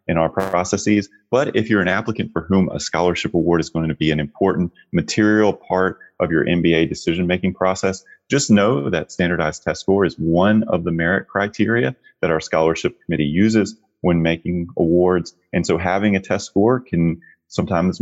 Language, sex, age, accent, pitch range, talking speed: English, male, 30-49, American, 80-100 Hz, 180 wpm